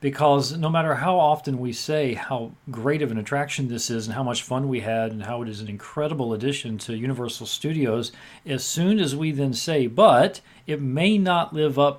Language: English